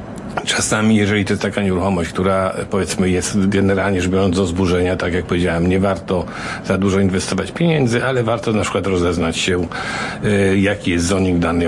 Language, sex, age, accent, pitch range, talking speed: Polish, male, 50-69, native, 90-110 Hz, 170 wpm